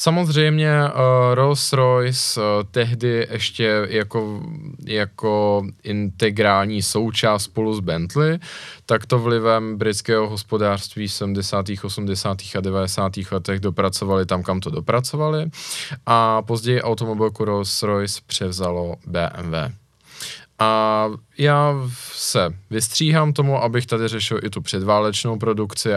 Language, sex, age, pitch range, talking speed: Czech, male, 20-39, 100-120 Hz, 110 wpm